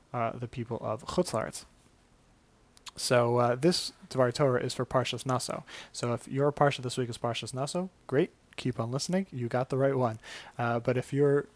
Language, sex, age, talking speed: English, male, 20-39, 185 wpm